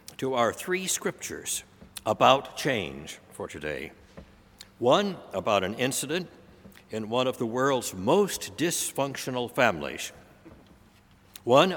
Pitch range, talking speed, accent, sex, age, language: 100-135 Hz, 105 wpm, American, male, 60-79, English